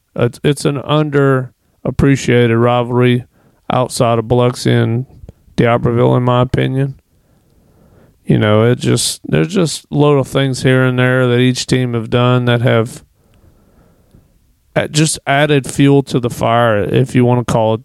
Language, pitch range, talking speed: English, 120-135 Hz, 150 wpm